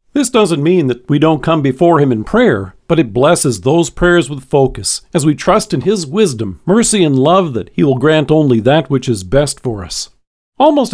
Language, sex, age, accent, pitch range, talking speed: English, male, 50-69, American, 135-190 Hz, 215 wpm